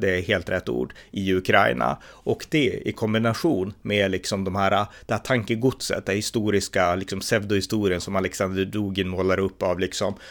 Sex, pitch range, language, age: male, 95-115 Hz, Swedish, 30-49